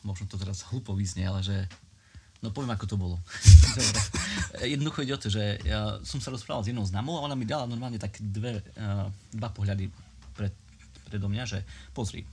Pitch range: 95-115 Hz